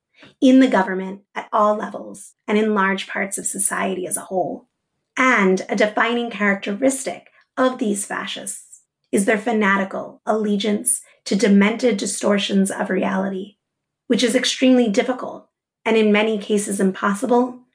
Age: 30-49